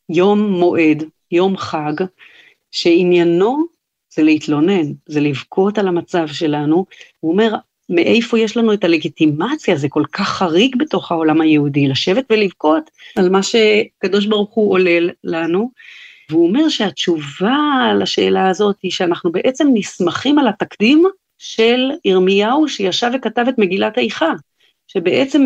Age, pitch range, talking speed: 40-59, 175-245 Hz, 125 wpm